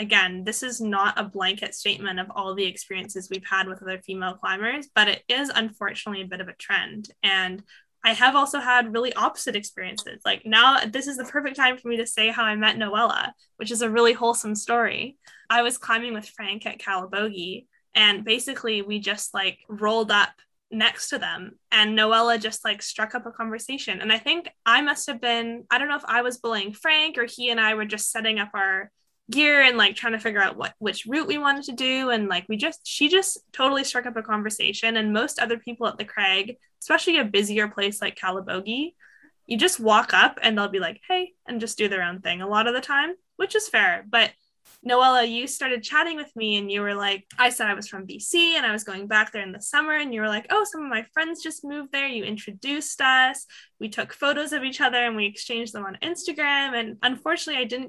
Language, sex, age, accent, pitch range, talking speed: English, female, 10-29, American, 205-265 Hz, 230 wpm